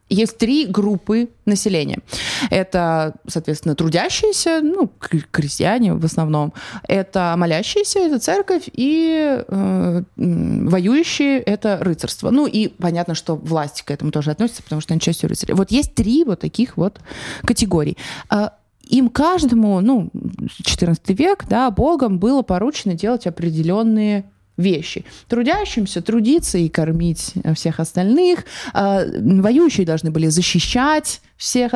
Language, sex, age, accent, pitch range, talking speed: Russian, female, 20-39, native, 180-260 Hz, 120 wpm